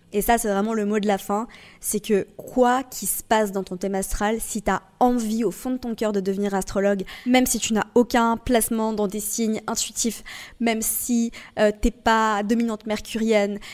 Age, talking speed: 20-39, 210 wpm